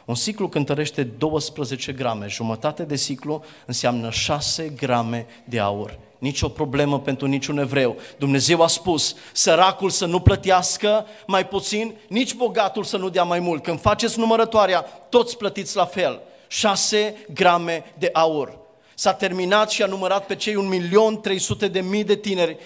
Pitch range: 155-195 Hz